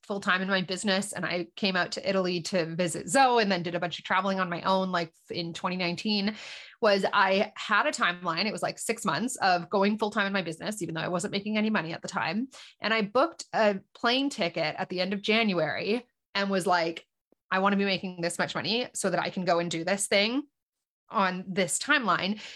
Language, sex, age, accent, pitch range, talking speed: English, female, 20-39, American, 185-235 Hz, 230 wpm